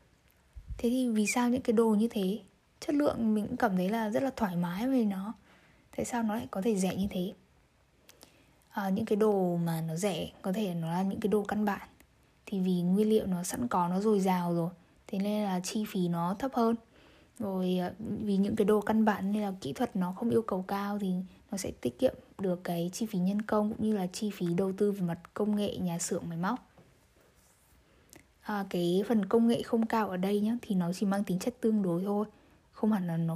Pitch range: 180-220 Hz